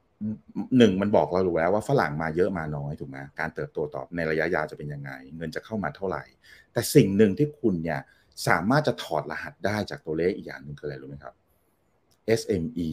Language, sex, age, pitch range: Thai, male, 30-49, 80-115 Hz